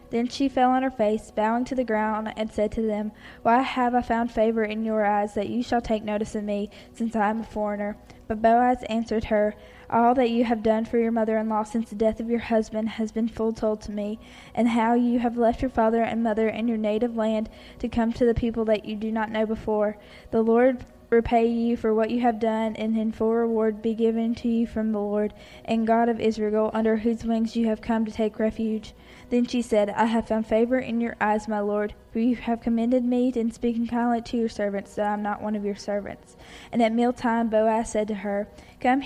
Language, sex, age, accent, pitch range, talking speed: English, female, 10-29, American, 220-235 Hz, 235 wpm